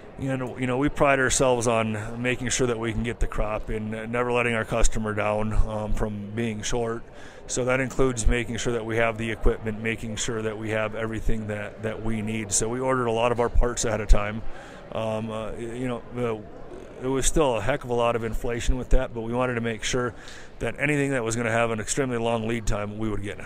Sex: male